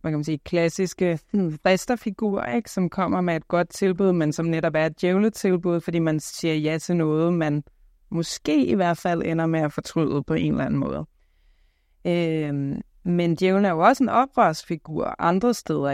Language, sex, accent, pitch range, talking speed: Danish, female, native, 155-185 Hz, 185 wpm